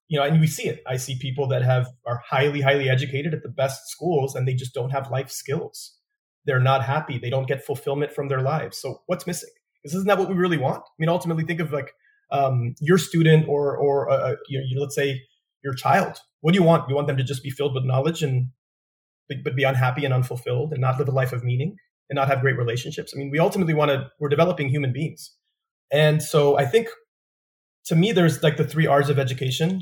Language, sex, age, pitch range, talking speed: English, male, 30-49, 135-165 Hz, 235 wpm